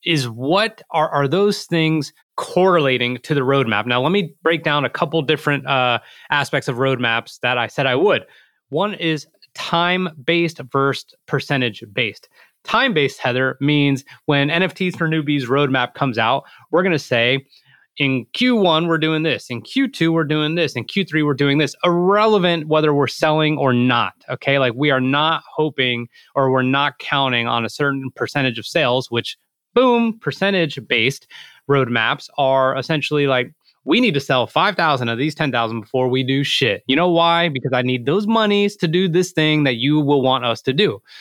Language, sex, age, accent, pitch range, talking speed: English, male, 30-49, American, 130-165 Hz, 175 wpm